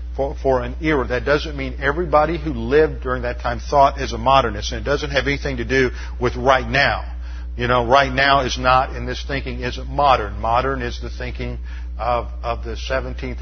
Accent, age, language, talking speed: American, 50-69, English, 205 wpm